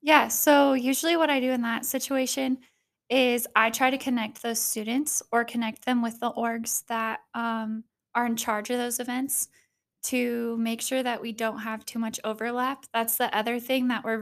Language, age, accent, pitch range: English, 10-29, American, 225-255 Hz